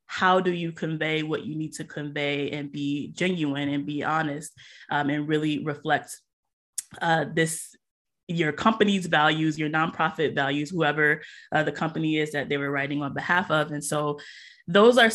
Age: 20-39